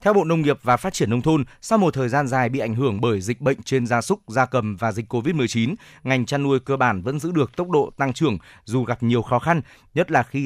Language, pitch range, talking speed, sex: Vietnamese, 120-150 Hz, 275 wpm, male